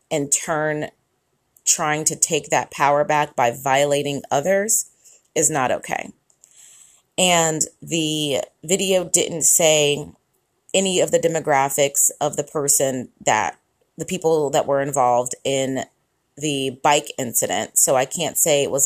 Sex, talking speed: female, 135 wpm